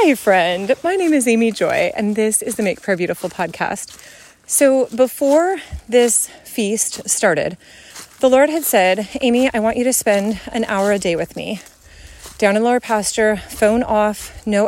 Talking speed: 175 wpm